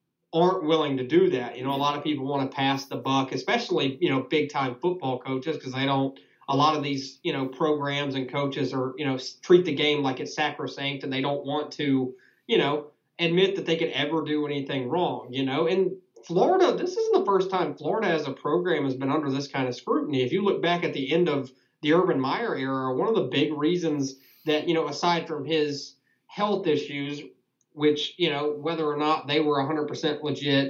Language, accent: English, American